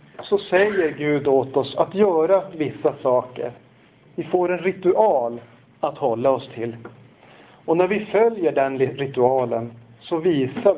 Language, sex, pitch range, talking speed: Swedish, male, 130-170 Hz, 140 wpm